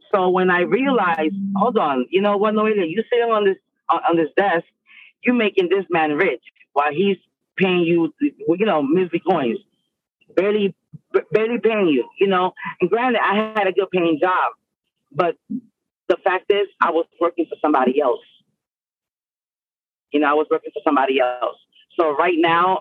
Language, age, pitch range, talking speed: English, 30-49, 160-220 Hz, 170 wpm